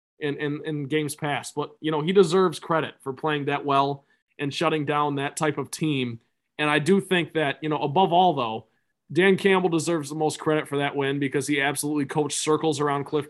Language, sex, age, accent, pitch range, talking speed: English, male, 20-39, American, 140-170 Hz, 215 wpm